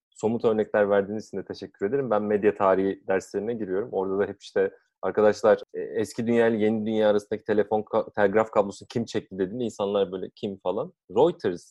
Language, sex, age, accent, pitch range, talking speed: Turkish, male, 30-49, native, 105-165 Hz, 175 wpm